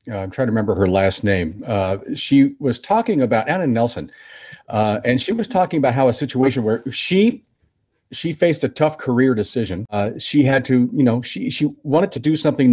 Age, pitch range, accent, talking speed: 50-69, 105-140 Hz, American, 210 wpm